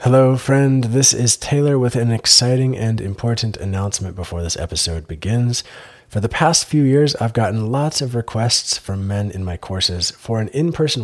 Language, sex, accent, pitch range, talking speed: English, male, American, 100-135 Hz, 180 wpm